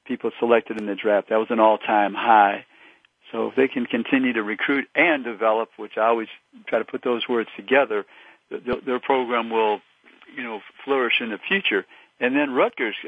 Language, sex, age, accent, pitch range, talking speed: English, male, 50-69, American, 105-125 Hz, 195 wpm